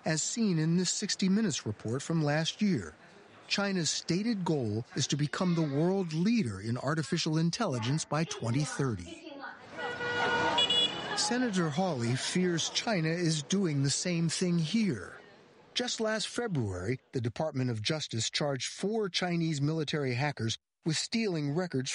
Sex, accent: male, American